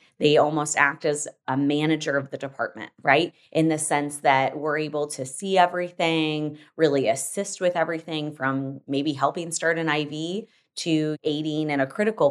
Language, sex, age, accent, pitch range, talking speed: English, female, 20-39, American, 145-175 Hz, 165 wpm